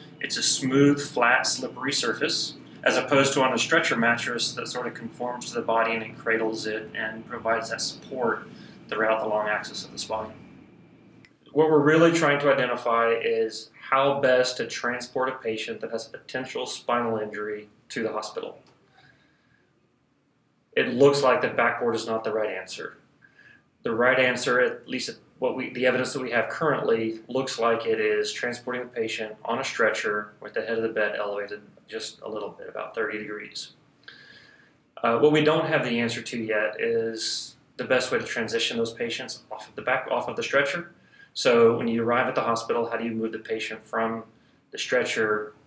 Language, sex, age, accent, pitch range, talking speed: English, male, 30-49, American, 110-140 Hz, 190 wpm